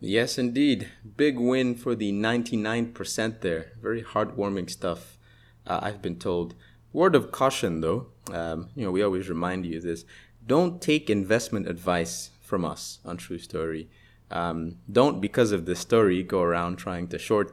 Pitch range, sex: 85-115 Hz, male